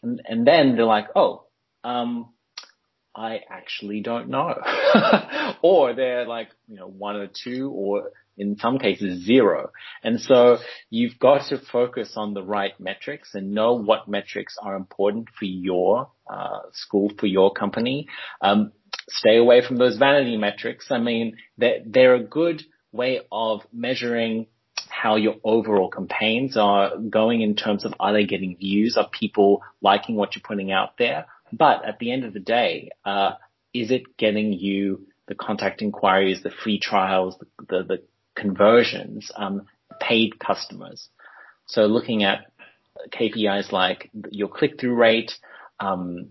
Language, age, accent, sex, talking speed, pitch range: English, 30-49, Australian, male, 155 wpm, 100-120 Hz